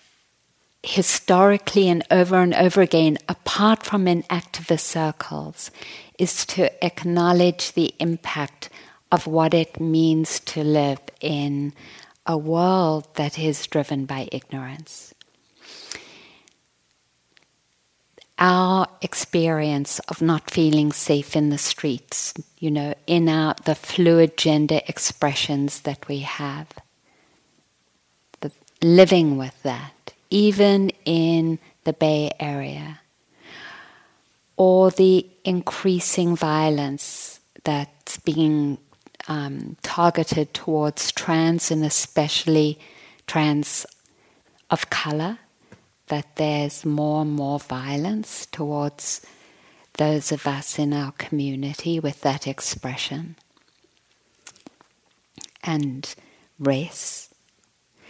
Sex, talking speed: female, 95 wpm